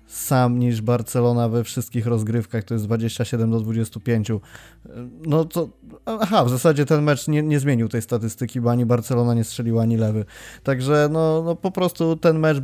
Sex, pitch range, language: male, 115-125 Hz, Polish